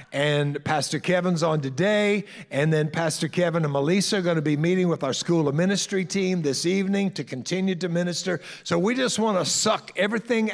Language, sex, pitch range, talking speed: English, male, 150-200 Hz, 200 wpm